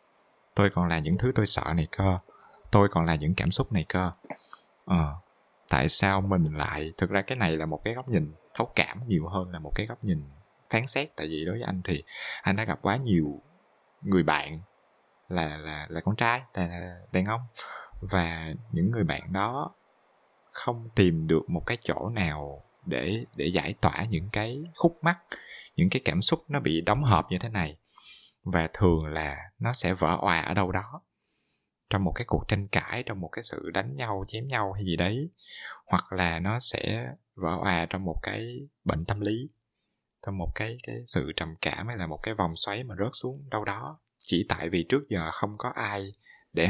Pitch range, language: 85-115 Hz, Vietnamese